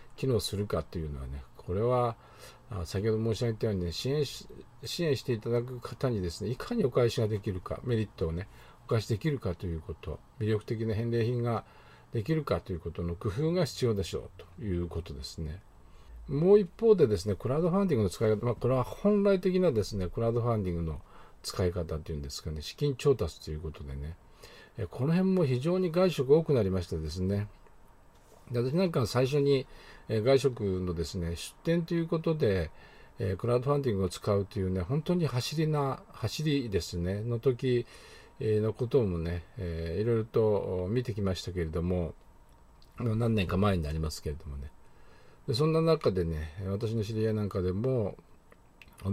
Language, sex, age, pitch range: Japanese, male, 50-69, 90-125 Hz